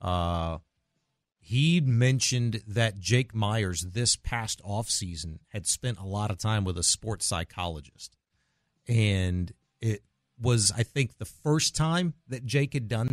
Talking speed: 145 wpm